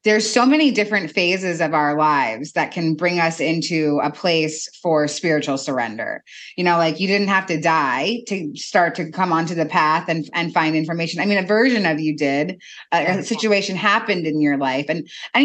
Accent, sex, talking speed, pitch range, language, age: American, female, 200 wpm, 160-205 Hz, English, 20-39